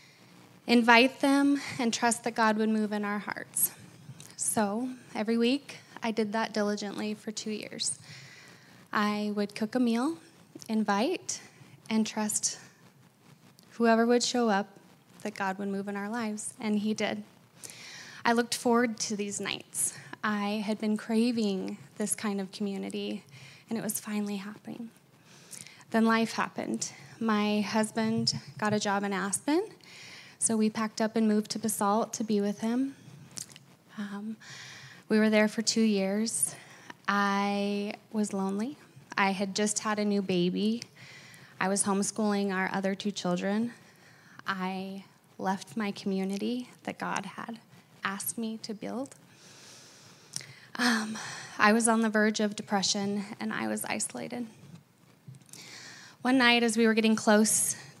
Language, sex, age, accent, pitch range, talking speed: English, female, 10-29, American, 195-225 Hz, 145 wpm